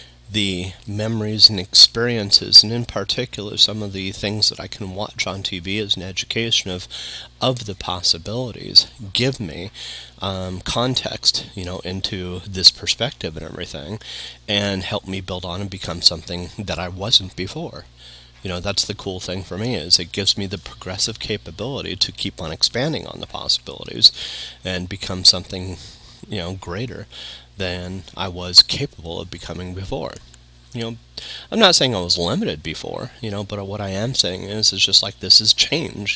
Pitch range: 90-105 Hz